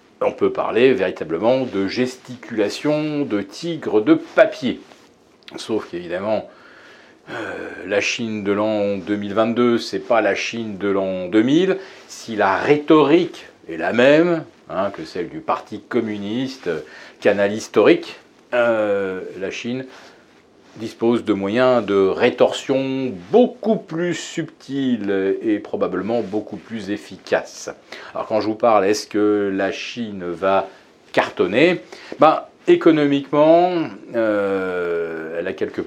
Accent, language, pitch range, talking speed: French, French, 100-150 Hz, 120 wpm